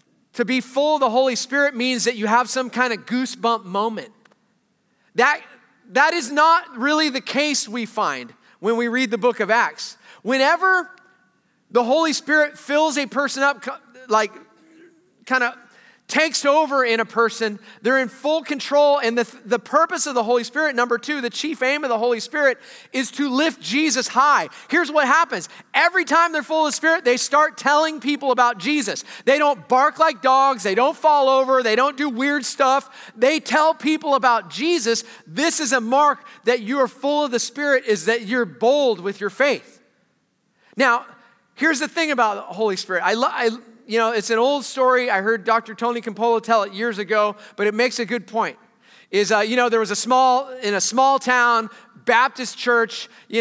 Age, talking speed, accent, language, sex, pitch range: 30-49, 195 wpm, American, English, male, 230-290 Hz